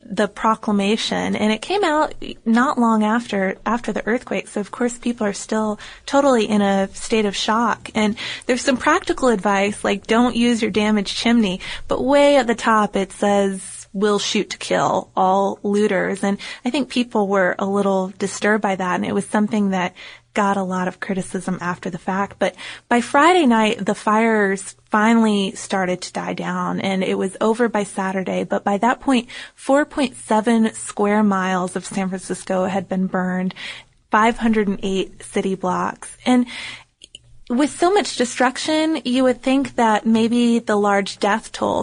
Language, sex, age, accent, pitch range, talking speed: English, female, 20-39, American, 195-230 Hz, 175 wpm